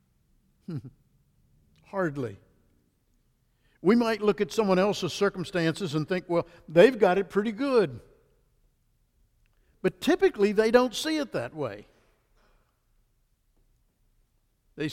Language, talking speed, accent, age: English, 100 wpm, American, 60-79